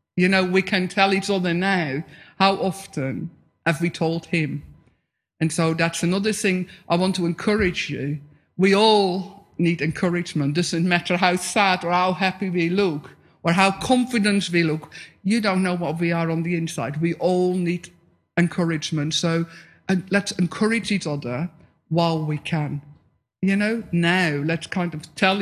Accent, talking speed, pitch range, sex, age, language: British, 165 wpm, 145-180 Hz, male, 50-69, English